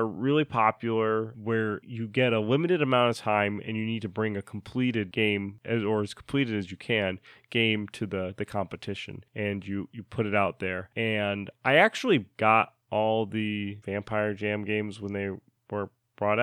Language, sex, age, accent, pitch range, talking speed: English, male, 20-39, American, 100-120 Hz, 185 wpm